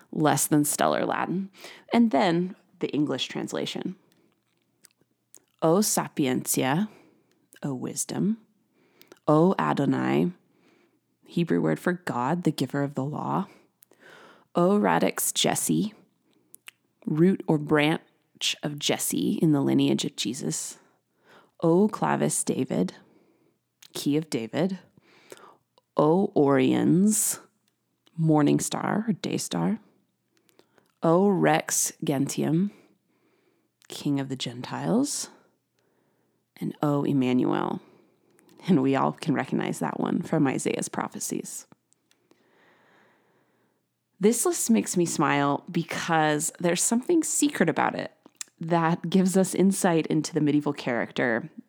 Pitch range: 145-195 Hz